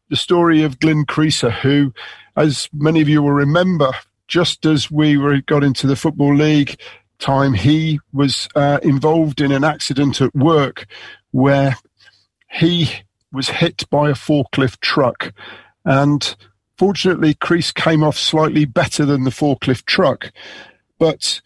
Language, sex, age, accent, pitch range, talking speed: English, male, 50-69, British, 130-155 Hz, 145 wpm